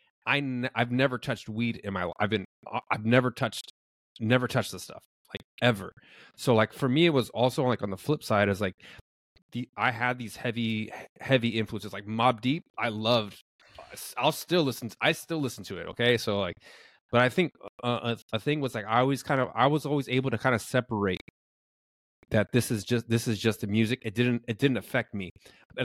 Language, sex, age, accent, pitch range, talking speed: English, male, 30-49, American, 110-130 Hz, 220 wpm